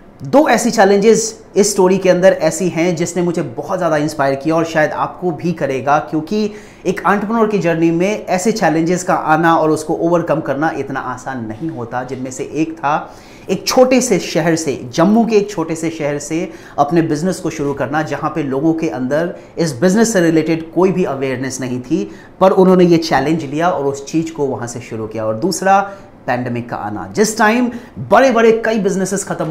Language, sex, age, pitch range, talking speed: Hindi, male, 30-49, 145-190 Hz, 200 wpm